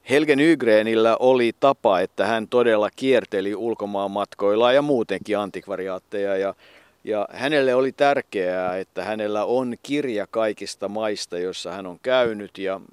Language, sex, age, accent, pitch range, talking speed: Finnish, male, 50-69, native, 105-120 Hz, 115 wpm